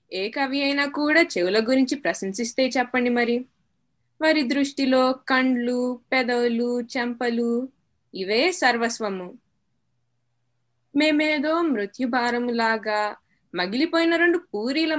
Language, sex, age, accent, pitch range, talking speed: Telugu, female, 20-39, native, 210-280 Hz, 90 wpm